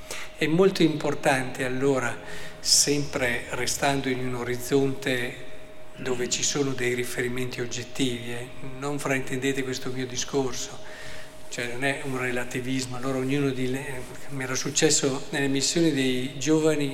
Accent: native